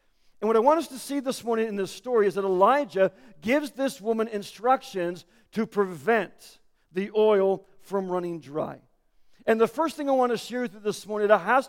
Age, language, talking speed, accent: 50-69, English, 205 wpm, American